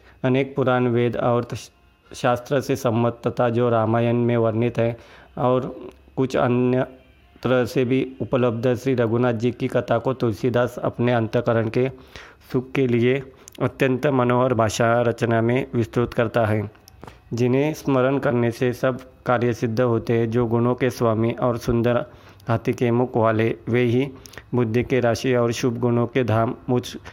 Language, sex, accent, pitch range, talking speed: Hindi, male, native, 115-125 Hz, 155 wpm